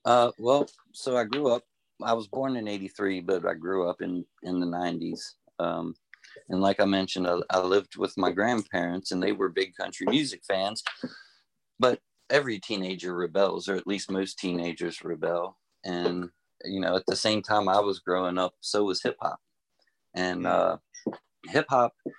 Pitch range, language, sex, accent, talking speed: 95-110 Hz, English, male, American, 175 wpm